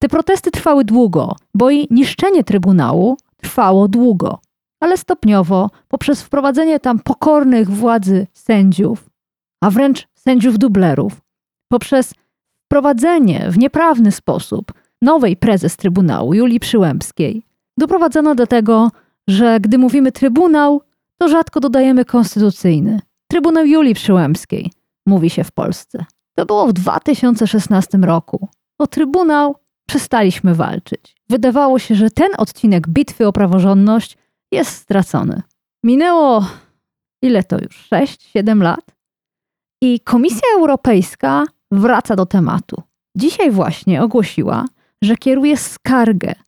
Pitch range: 190-270 Hz